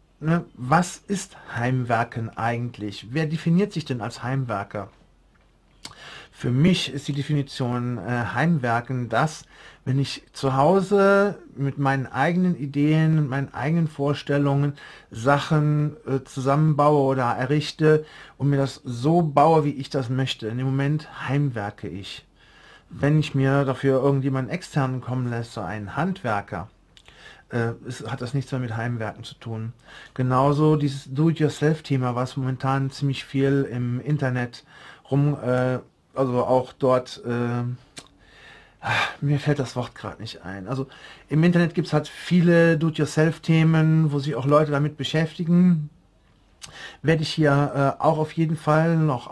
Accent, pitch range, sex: German, 125-155 Hz, male